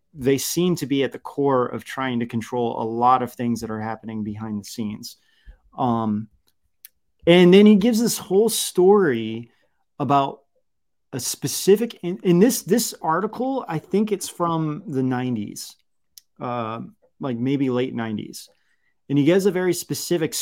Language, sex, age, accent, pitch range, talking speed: English, male, 30-49, American, 115-165 Hz, 155 wpm